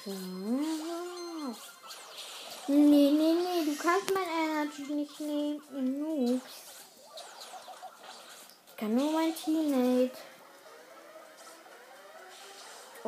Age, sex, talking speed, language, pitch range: 20-39, female, 75 wpm, English, 225-305 Hz